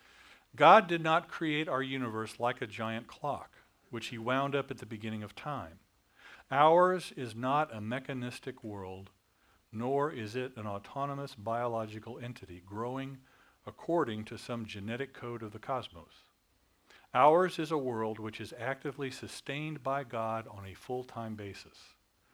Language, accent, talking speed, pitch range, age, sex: English, American, 150 wpm, 100-130 Hz, 50-69, male